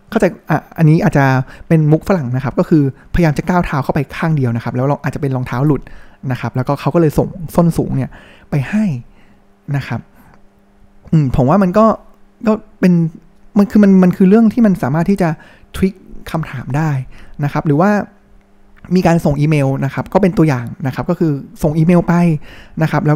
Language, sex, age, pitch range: Thai, male, 20-39, 135-180 Hz